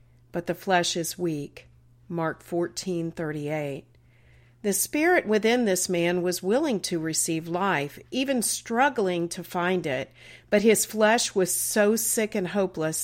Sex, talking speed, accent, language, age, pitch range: female, 140 wpm, American, English, 50-69, 160-210 Hz